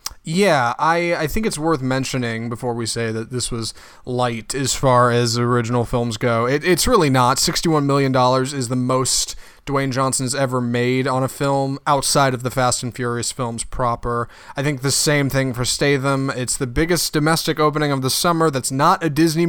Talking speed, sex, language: 195 wpm, male, English